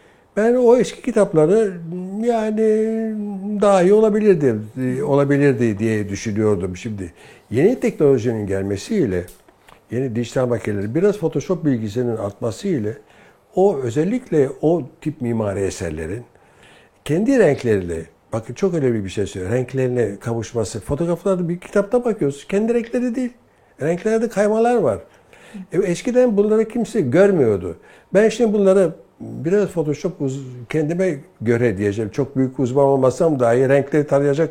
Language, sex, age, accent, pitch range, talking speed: Turkish, male, 60-79, native, 125-200 Hz, 120 wpm